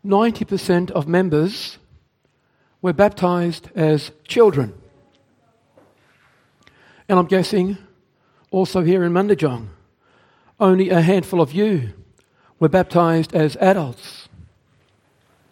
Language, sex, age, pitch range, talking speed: English, male, 60-79, 160-195 Hz, 85 wpm